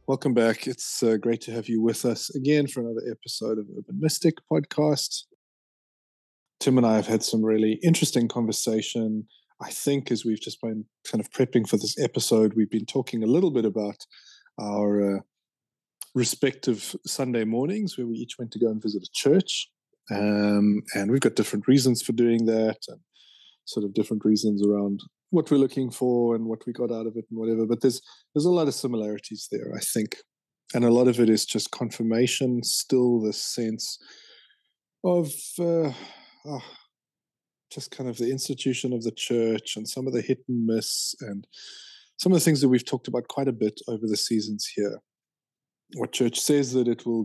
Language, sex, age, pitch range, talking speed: English, male, 20-39, 110-135 Hz, 190 wpm